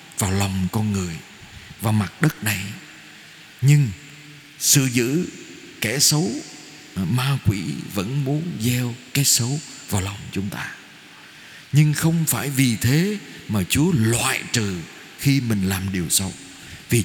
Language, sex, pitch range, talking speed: Vietnamese, male, 110-150 Hz, 135 wpm